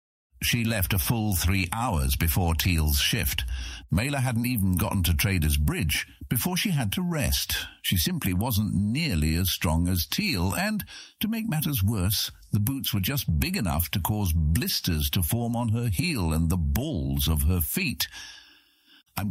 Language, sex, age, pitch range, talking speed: English, male, 60-79, 75-105 Hz, 170 wpm